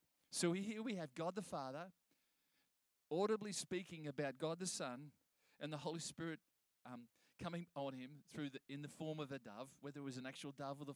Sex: male